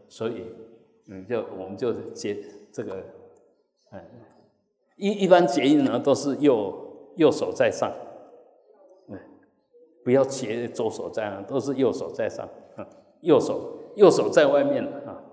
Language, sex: Chinese, male